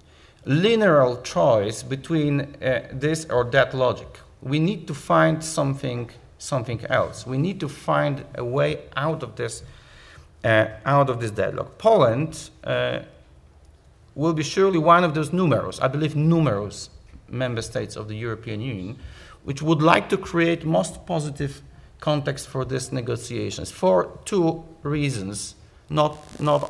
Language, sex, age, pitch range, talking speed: English, male, 50-69, 115-155 Hz, 140 wpm